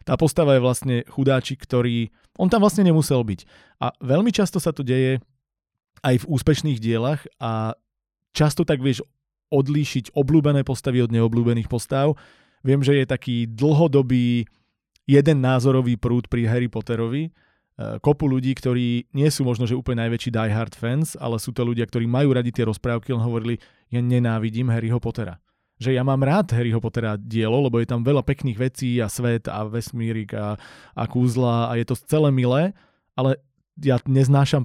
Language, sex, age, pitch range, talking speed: Slovak, male, 20-39, 115-140 Hz, 165 wpm